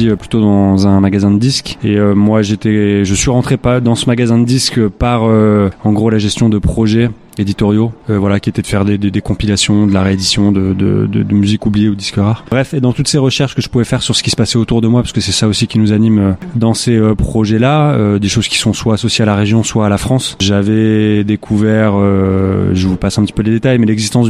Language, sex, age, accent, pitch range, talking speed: French, male, 20-39, French, 105-125 Hz, 265 wpm